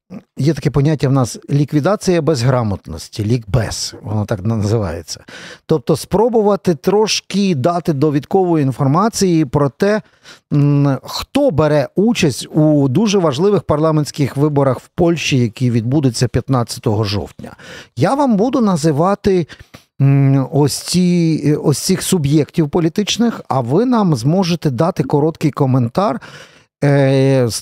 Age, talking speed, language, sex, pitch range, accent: 50-69, 110 wpm, Ukrainian, male, 125-170 Hz, native